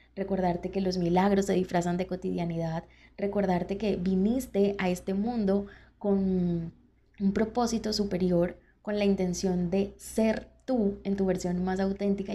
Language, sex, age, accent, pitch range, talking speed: Spanish, female, 20-39, Colombian, 180-200 Hz, 140 wpm